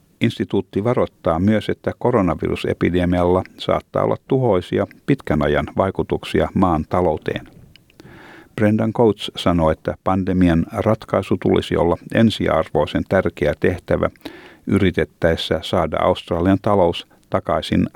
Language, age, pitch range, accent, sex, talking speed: Finnish, 50-69, 85-110 Hz, native, male, 95 wpm